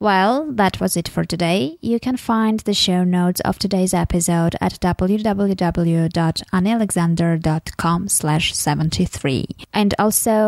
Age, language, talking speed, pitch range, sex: 20-39, English, 115 wpm, 170-200 Hz, female